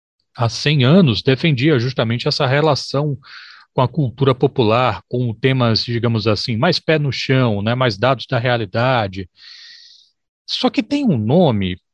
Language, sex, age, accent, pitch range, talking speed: Portuguese, male, 40-59, Brazilian, 120-165 Hz, 145 wpm